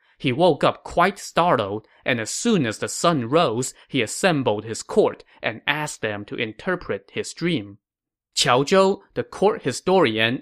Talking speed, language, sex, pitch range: 160 wpm, English, male, 115-160 Hz